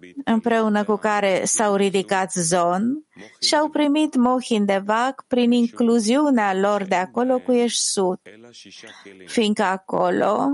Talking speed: 125 wpm